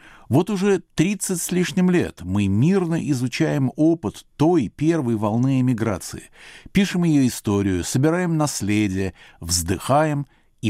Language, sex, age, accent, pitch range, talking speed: Russian, male, 60-79, native, 100-150 Hz, 120 wpm